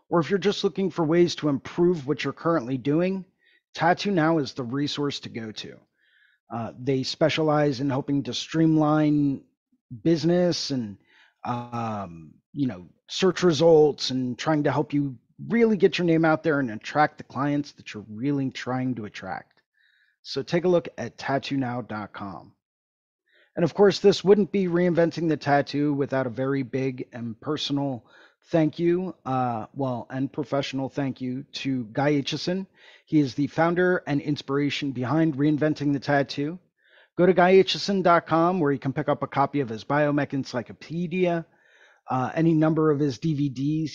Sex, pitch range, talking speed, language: male, 130-165 Hz, 160 wpm, English